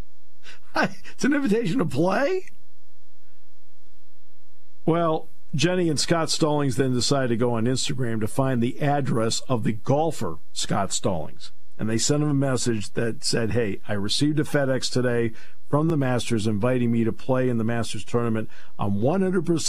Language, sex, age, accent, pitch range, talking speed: English, male, 50-69, American, 95-150 Hz, 155 wpm